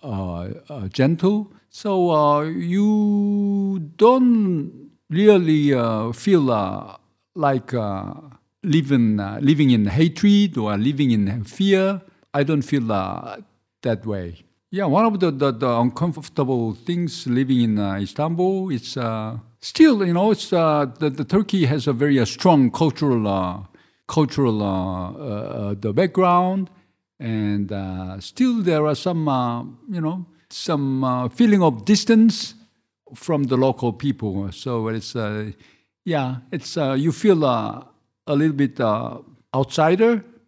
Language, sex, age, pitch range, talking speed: English, male, 50-69, 120-180 Hz, 140 wpm